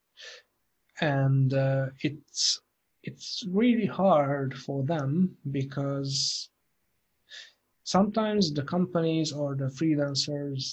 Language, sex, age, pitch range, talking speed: English, male, 30-49, 135-155 Hz, 85 wpm